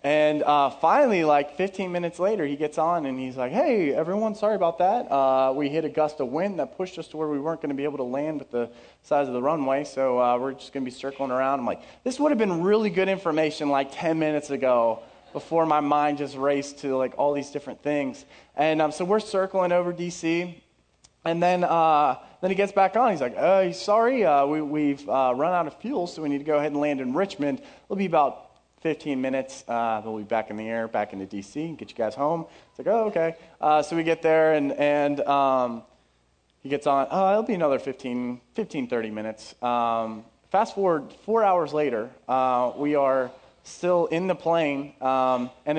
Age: 30-49